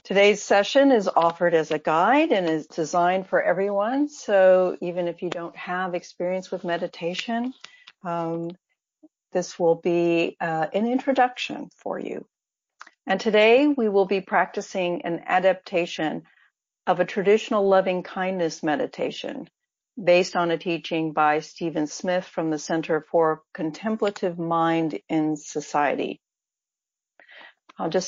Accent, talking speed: American, 130 wpm